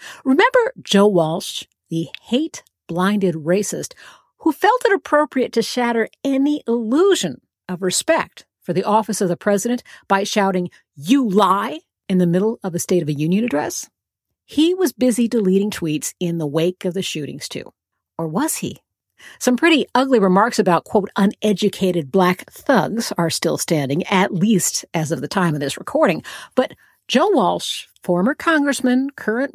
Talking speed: 160 wpm